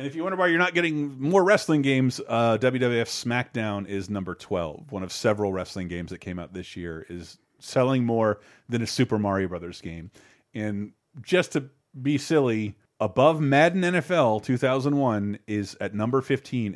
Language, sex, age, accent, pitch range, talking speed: English, male, 30-49, American, 100-135 Hz, 175 wpm